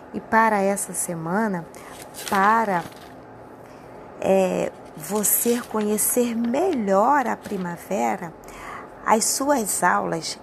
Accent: Brazilian